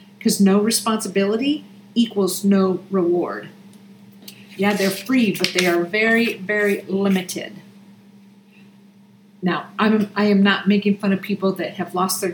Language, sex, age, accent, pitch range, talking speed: English, female, 50-69, American, 185-200 Hz, 140 wpm